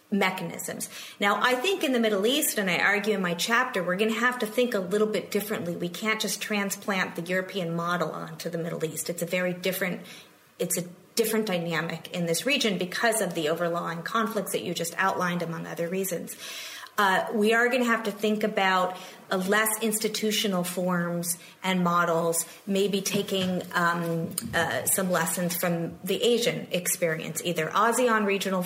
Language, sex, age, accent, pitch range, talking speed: English, female, 30-49, American, 175-215 Hz, 180 wpm